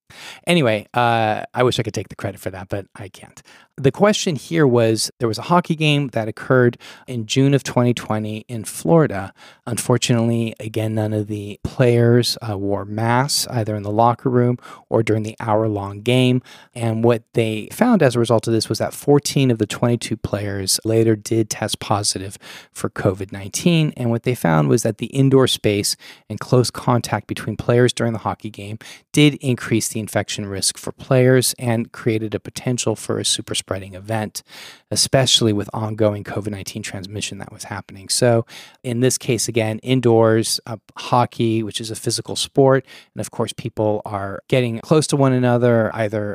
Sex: male